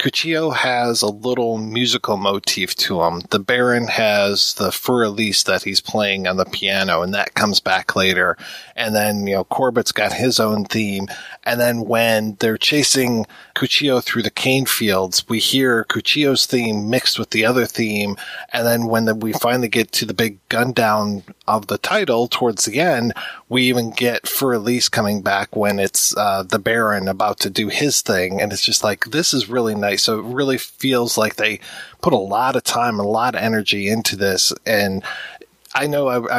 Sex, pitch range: male, 105-130 Hz